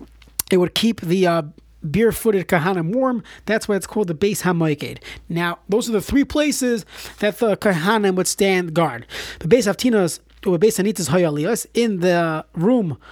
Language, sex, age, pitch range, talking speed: English, male, 30-49, 165-215 Hz, 170 wpm